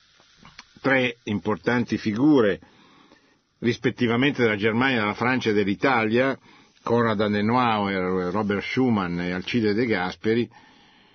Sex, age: male, 50-69